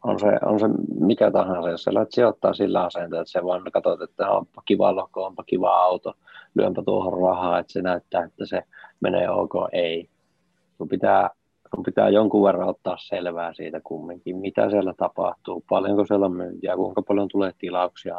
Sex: male